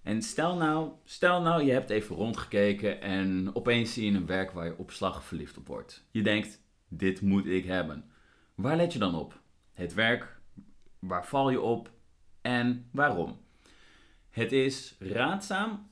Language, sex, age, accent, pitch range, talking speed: Dutch, male, 30-49, Dutch, 90-120 Hz, 160 wpm